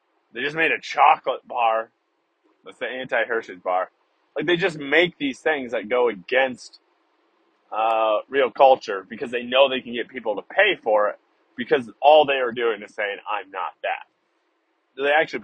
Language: English